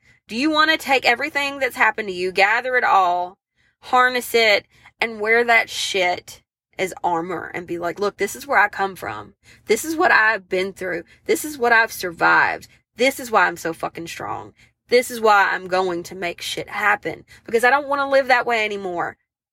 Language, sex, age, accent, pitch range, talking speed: English, female, 20-39, American, 190-255 Hz, 205 wpm